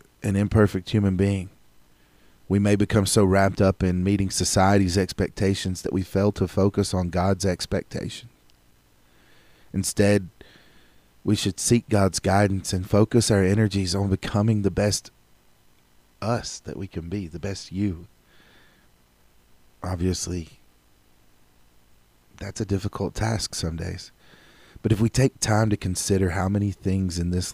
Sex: male